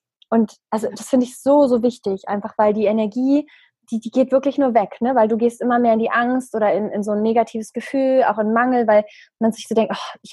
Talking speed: 255 wpm